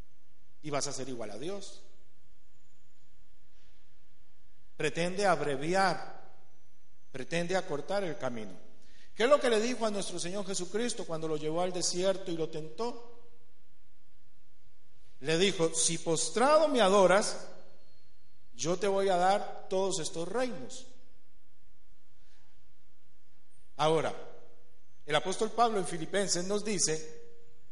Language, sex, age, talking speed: Spanish, male, 50-69, 115 wpm